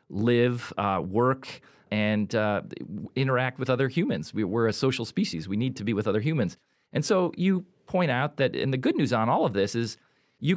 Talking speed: 205 wpm